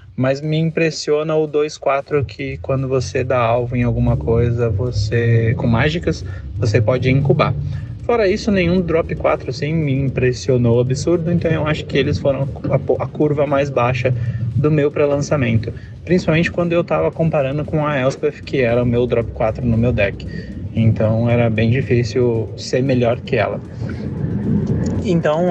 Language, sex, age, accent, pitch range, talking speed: Portuguese, male, 20-39, Brazilian, 115-150 Hz, 160 wpm